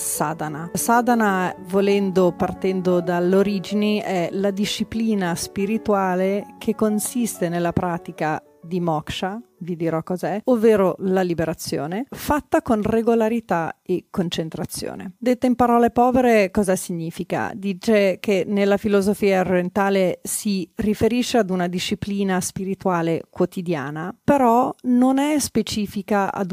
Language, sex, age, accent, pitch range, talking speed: Italian, female, 40-59, native, 180-215 Hz, 110 wpm